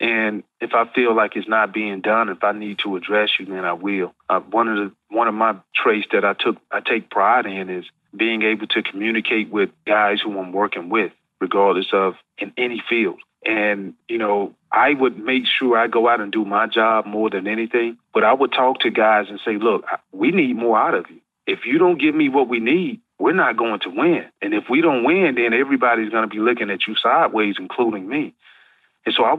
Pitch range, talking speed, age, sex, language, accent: 105-120 Hz, 230 wpm, 30-49, male, English, American